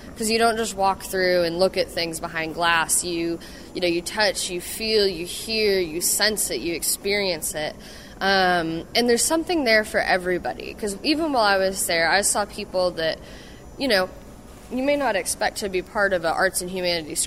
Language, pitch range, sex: English, 170-205 Hz, female